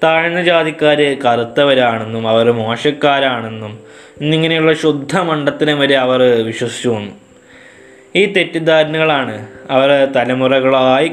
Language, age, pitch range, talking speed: Malayalam, 20-39, 120-150 Hz, 85 wpm